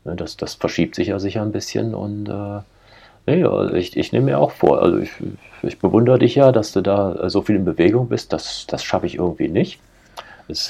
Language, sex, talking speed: German, male, 215 wpm